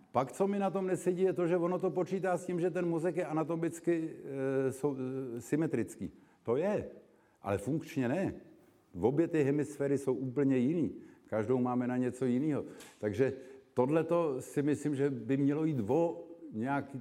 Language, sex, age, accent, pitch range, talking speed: Czech, male, 50-69, native, 125-160 Hz, 175 wpm